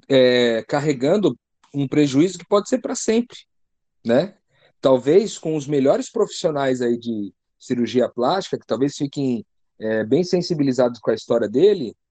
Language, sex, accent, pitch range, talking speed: Portuguese, male, Brazilian, 130-205 Hz, 145 wpm